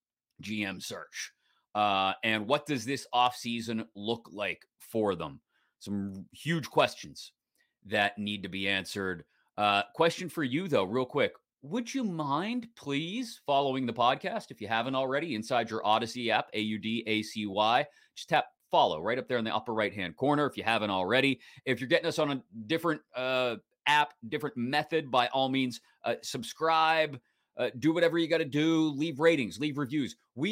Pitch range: 110-155 Hz